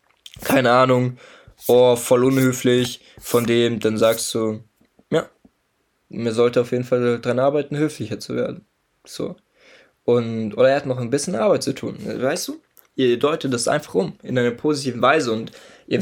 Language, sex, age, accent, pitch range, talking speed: German, male, 20-39, German, 115-135 Hz, 170 wpm